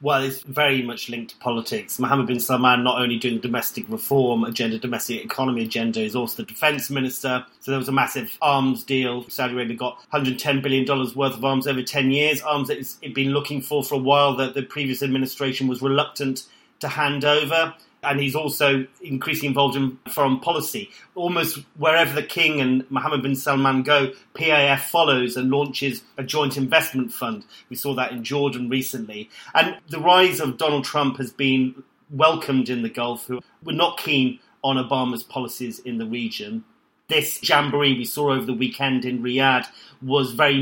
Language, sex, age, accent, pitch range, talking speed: English, male, 30-49, British, 125-145 Hz, 185 wpm